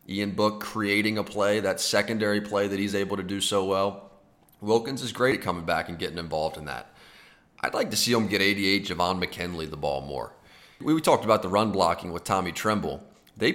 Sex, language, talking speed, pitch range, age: male, English, 215 wpm, 95-115 Hz, 30-49